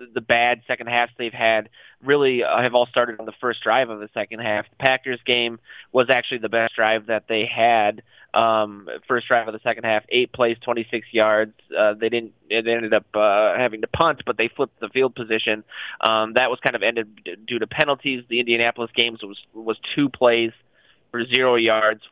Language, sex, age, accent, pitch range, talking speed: English, male, 20-39, American, 110-130 Hz, 205 wpm